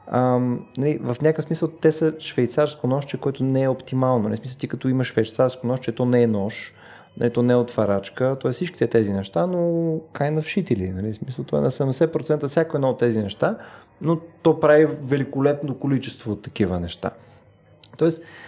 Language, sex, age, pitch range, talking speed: Bulgarian, male, 20-39, 110-140 Hz, 180 wpm